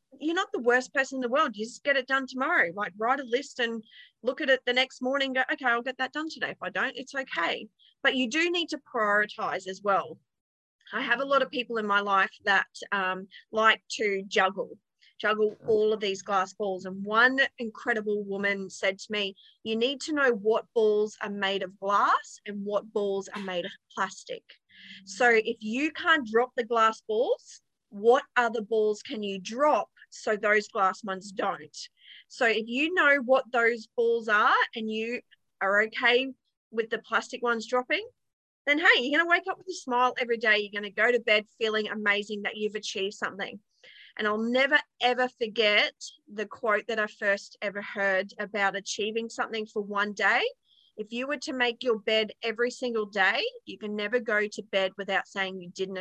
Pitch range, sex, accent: 205-260 Hz, female, Australian